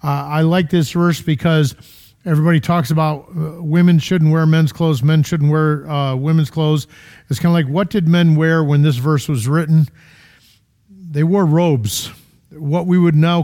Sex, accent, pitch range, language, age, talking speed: male, American, 140-175 Hz, English, 50-69, 185 wpm